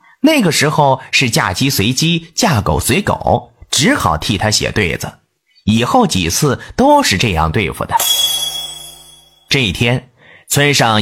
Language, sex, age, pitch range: Chinese, male, 30-49, 115-170 Hz